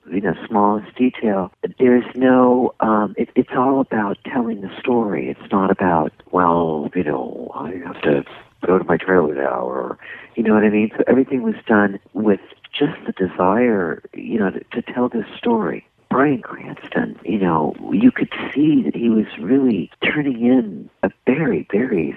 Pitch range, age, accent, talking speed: 100-130 Hz, 60-79, American, 175 wpm